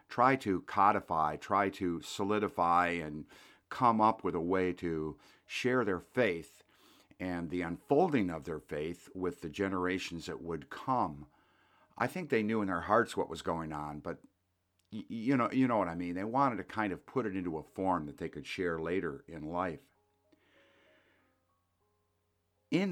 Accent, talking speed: American, 170 wpm